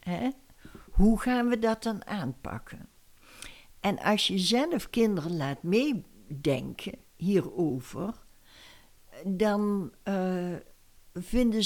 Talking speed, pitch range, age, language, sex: 85 wpm, 165-230 Hz, 60-79, Dutch, female